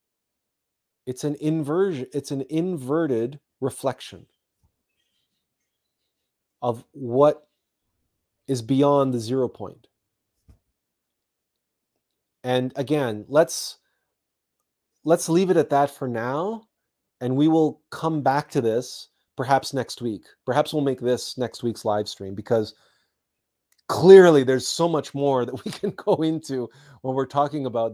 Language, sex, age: English, male, 30-49